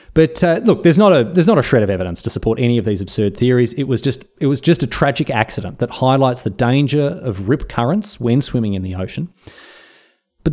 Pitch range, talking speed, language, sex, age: 110-160 Hz, 235 wpm, English, male, 30-49